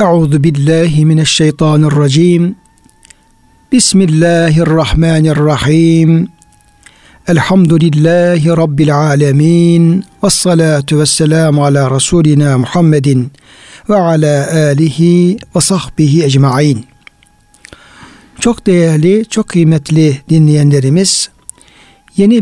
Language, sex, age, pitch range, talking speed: Turkish, male, 60-79, 145-175 Hz, 65 wpm